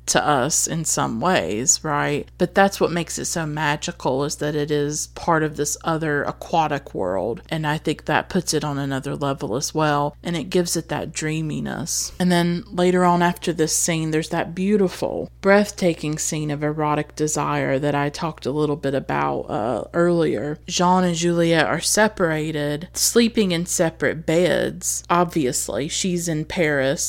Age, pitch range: 30-49, 155-195 Hz